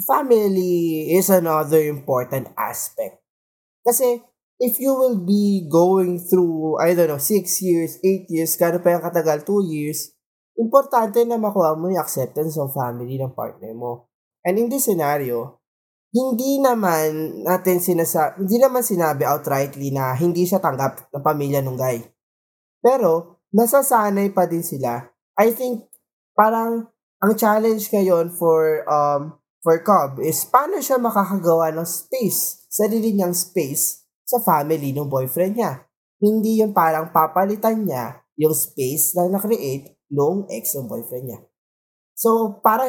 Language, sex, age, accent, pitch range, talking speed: Filipino, male, 20-39, native, 150-205 Hz, 135 wpm